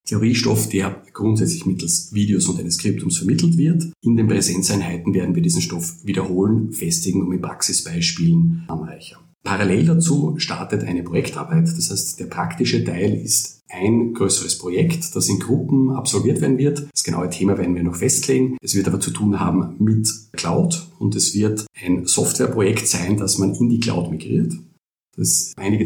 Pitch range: 90-120 Hz